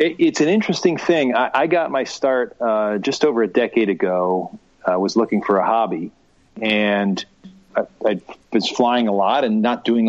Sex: male